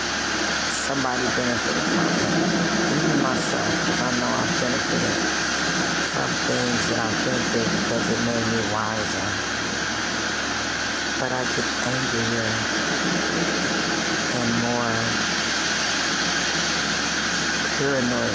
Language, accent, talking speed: English, American, 90 wpm